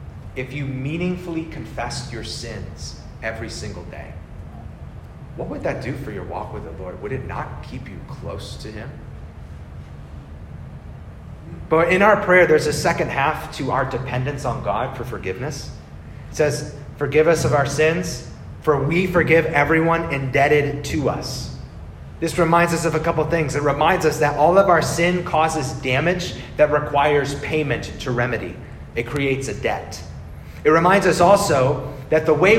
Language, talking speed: English, 165 wpm